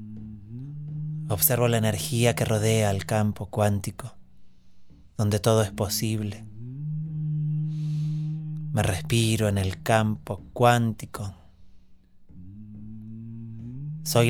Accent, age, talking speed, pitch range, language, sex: Argentinian, 30-49, 80 wpm, 95-130 Hz, Spanish, male